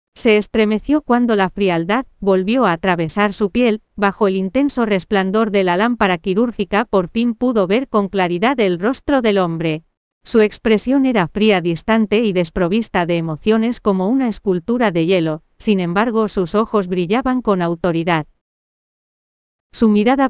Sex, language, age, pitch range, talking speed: female, Spanish, 40-59, 190-235 Hz, 150 wpm